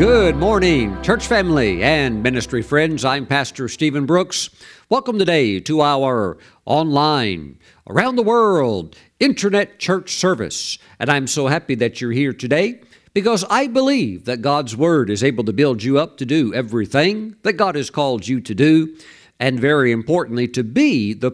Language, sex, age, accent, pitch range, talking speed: English, male, 50-69, American, 120-160 Hz, 165 wpm